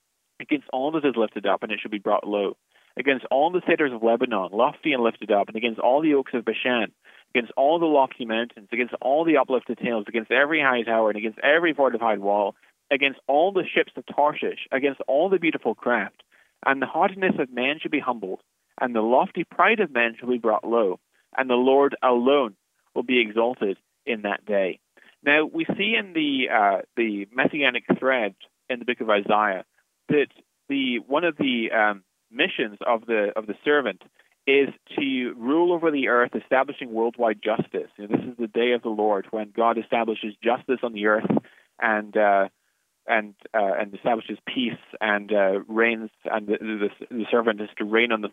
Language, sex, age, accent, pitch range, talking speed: English, male, 30-49, American, 110-140 Hz, 195 wpm